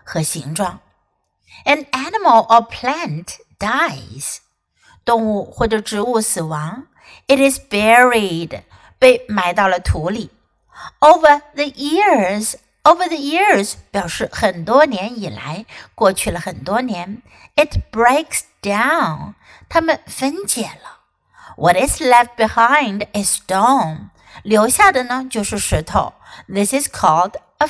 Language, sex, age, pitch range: Chinese, female, 60-79, 205-295 Hz